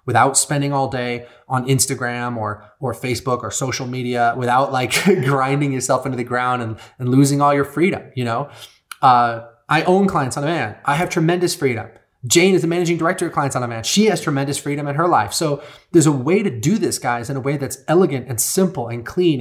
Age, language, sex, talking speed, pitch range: 30-49, English, male, 225 wpm, 125-165 Hz